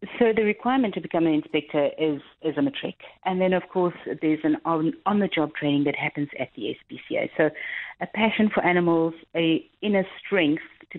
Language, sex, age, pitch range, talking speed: English, female, 40-59, 150-180 Hz, 185 wpm